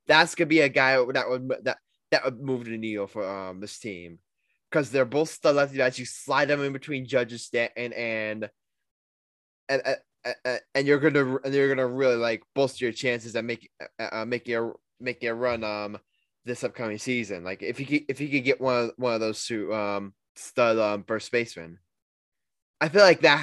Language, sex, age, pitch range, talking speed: English, male, 10-29, 110-145 Hz, 200 wpm